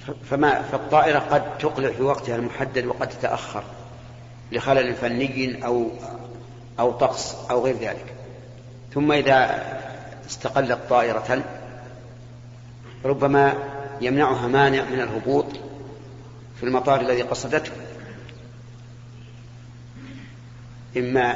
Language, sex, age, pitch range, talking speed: Arabic, male, 50-69, 120-130 Hz, 85 wpm